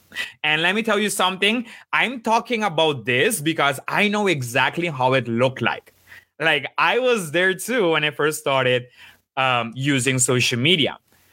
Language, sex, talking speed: English, male, 165 wpm